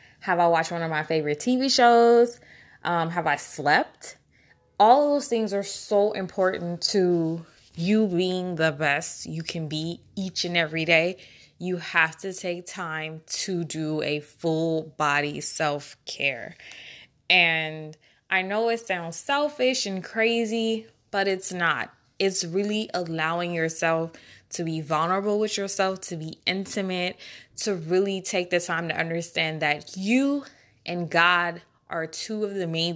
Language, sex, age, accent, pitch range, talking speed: English, female, 20-39, American, 160-195 Hz, 150 wpm